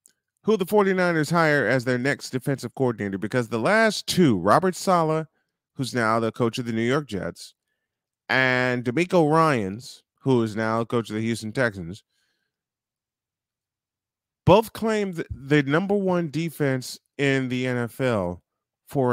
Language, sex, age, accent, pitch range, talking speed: English, male, 30-49, American, 110-145 Hz, 145 wpm